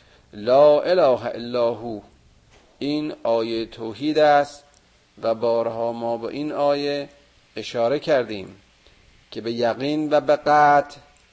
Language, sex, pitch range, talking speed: Persian, male, 115-145 Hz, 115 wpm